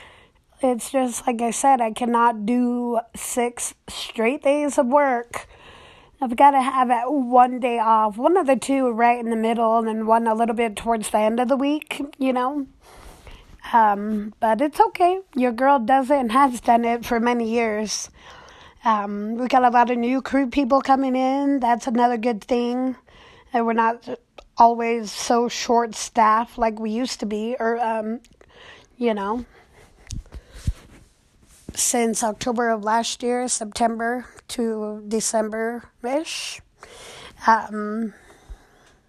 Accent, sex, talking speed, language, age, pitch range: American, female, 145 wpm, English, 20-39, 220-255 Hz